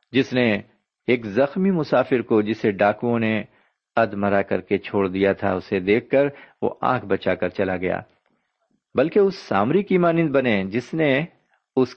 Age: 50-69